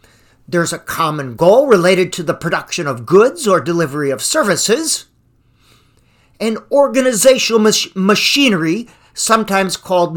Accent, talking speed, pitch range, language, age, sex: American, 120 wpm, 145-225 Hz, English, 50-69, male